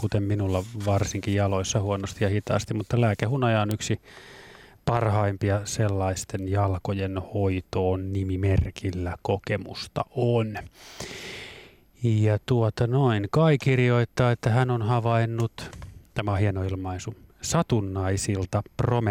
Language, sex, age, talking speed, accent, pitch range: Finnish, male, 30-49, 100 wpm, native, 100-120 Hz